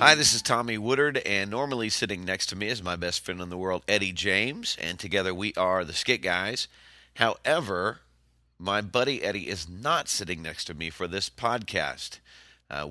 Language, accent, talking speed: English, American, 190 wpm